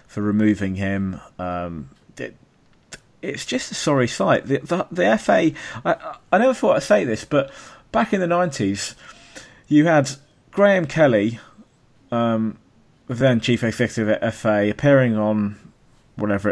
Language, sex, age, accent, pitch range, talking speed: English, male, 20-39, British, 95-115 Hz, 140 wpm